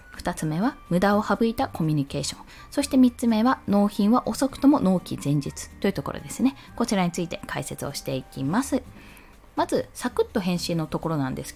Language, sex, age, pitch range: Japanese, female, 20-39, 170-275 Hz